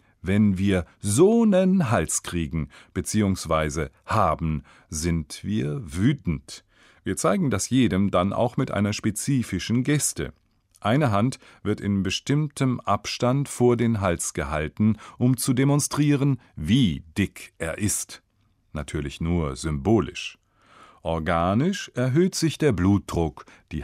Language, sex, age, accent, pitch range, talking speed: German, male, 40-59, German, 85-125 Hz, 120 wpm